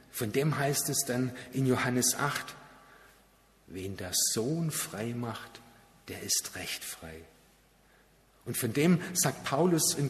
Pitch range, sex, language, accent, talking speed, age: 110-135 Hz, male, German, German, 135 wpm, 50-69